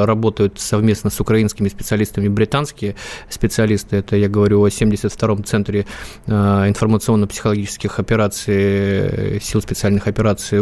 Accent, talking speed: native, 100 wpm